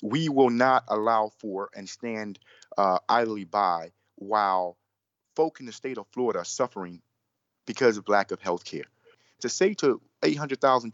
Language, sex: English, male